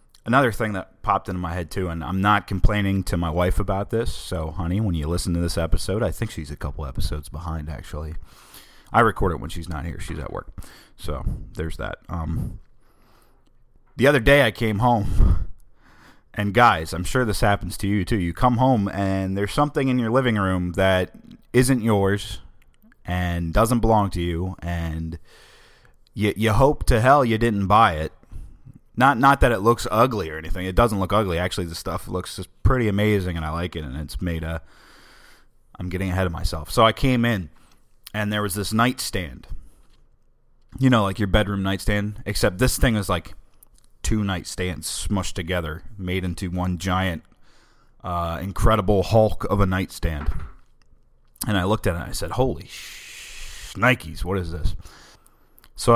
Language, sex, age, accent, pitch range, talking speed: English, male, 30-49, American, 85-110 Hz, 185 wpm